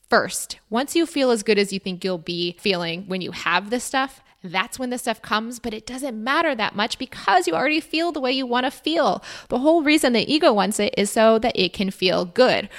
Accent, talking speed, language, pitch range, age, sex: American, 245 wpm, English, 185-255 Hz, 20-39, female